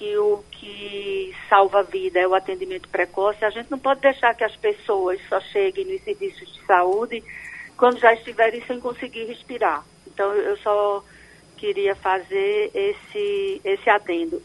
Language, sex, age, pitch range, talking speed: Portuguese, female, 50-69, 205-275 Hz, 160 wpm